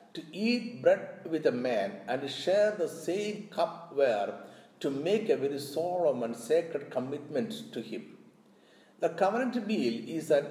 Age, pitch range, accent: 60-79, 120-200 Hz, native